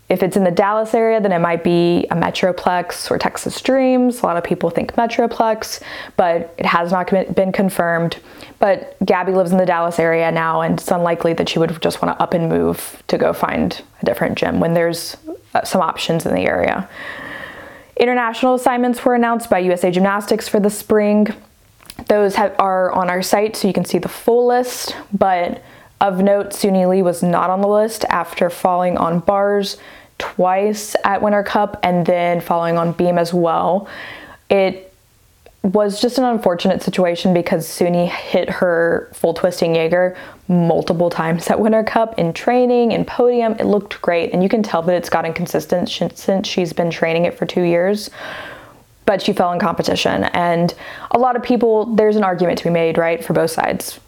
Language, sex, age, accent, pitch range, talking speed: English, female, 20-39, American, 170-210 Hz, 185 wpm